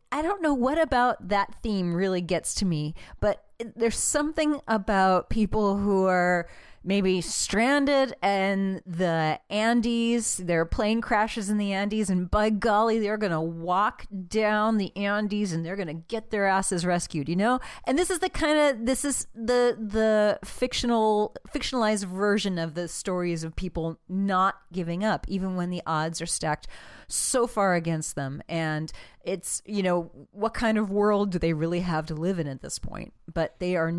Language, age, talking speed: English, 30-49, 180 wpm